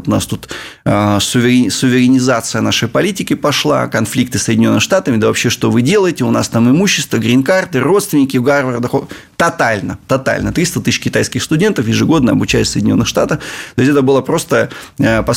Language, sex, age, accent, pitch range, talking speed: Russian, male, 20-39, native, 110-135 Hz, 165 wpm